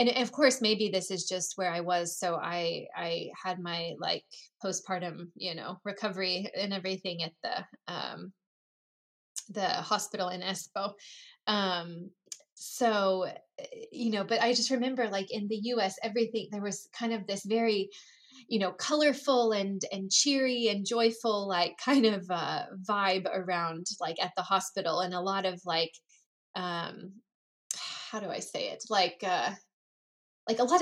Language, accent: Finnish, American